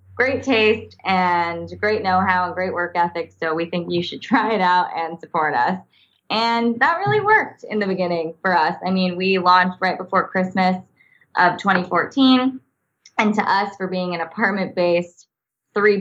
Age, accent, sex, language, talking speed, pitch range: 20-39, American, female, English, 170 wpm, 175-195 Hz